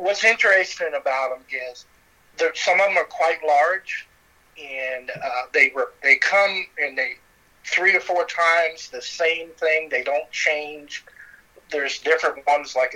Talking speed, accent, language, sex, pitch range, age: 160 wpm, American, English, male, 130-180 Hz, 50-69